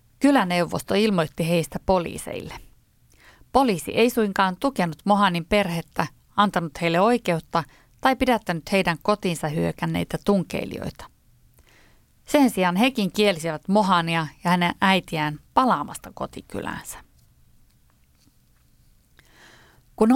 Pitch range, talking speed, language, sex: 165-215 Hz, 90 wpm, Finnish, female